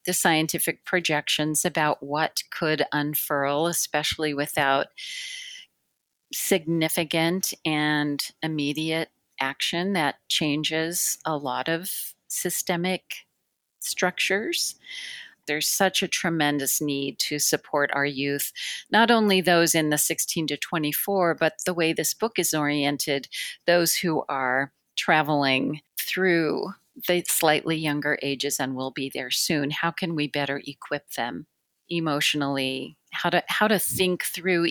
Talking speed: 120 wpm